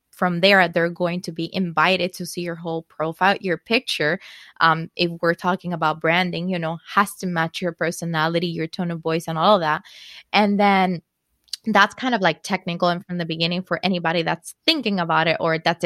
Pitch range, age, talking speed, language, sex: 170-195 Hz, 20-39, 205 wpm, English, female